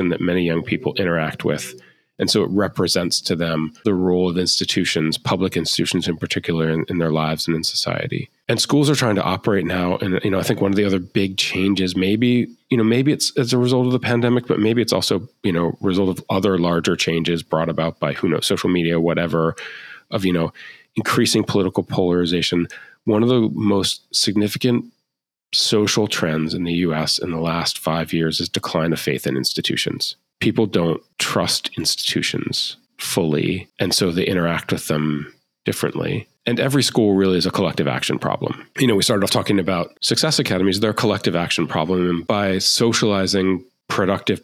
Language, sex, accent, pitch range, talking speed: English, male, American, 85-105 Hz, 190 wpm